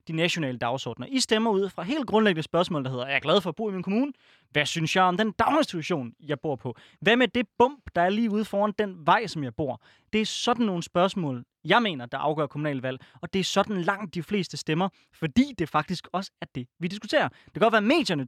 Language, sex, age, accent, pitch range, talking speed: Danish, male, 20-39, native, 145-195 Hz, 250 wpm